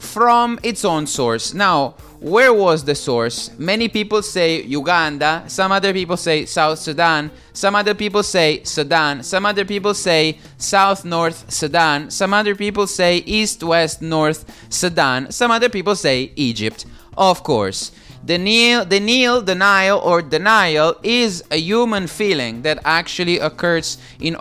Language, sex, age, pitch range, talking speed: English, male, 20-39, 145-195 Hz, 140 wpm